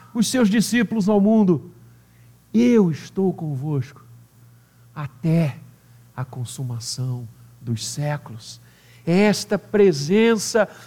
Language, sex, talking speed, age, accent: Portuguese, male, 85 wpm, 50-69, Brazilian